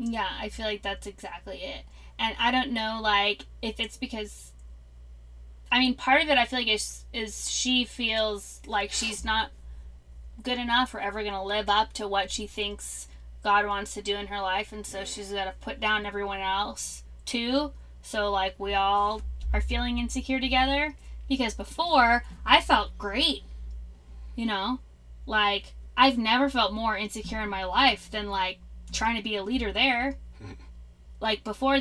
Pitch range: 190-240 Hz